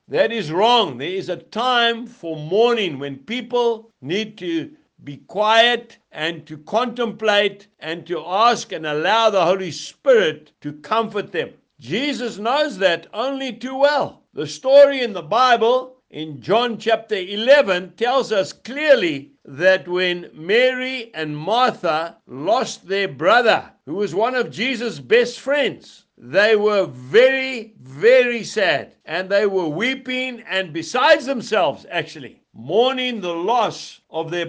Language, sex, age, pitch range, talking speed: English, male, 60-79, 190-250 Hz, 140 wpm